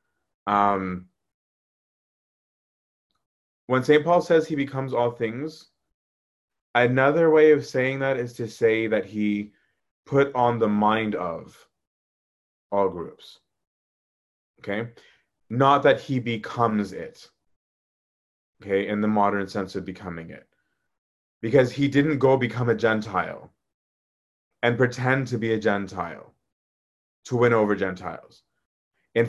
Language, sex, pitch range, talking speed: English, male, 100-125 Hz, 120 wpm